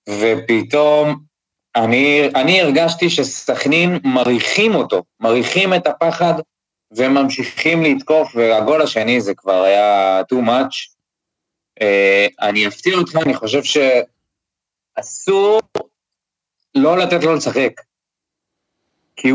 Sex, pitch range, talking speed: male, 105-155 Hz, 95 wpm